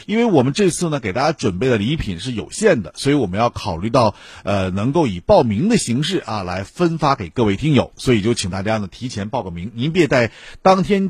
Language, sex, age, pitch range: Chinese, male, 50-69, 95-135 Hz